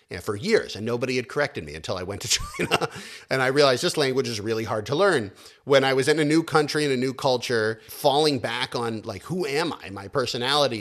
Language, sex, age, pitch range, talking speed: English, male, 30-49, 110-130 Hz, 240 wpm